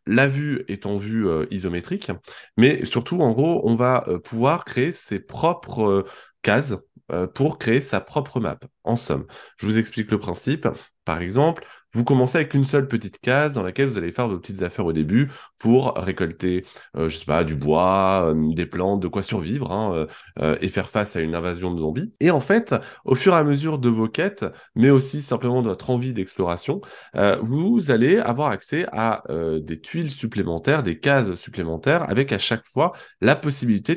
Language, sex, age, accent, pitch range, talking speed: French, male, 20-39, French, 95-135 Hz, 200 wpm